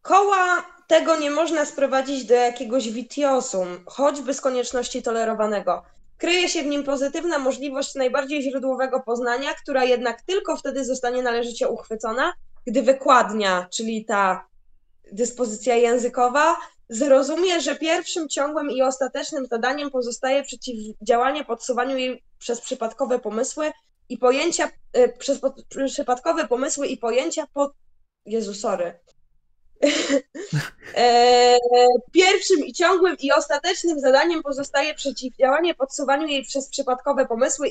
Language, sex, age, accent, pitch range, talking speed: Polish, female, 20-39, native, 235-290 Hz, 115 wpm